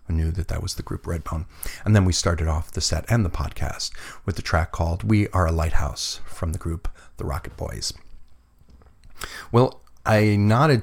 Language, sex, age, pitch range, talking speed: English, male, 40-59, 85-95 Hz, 190 wpm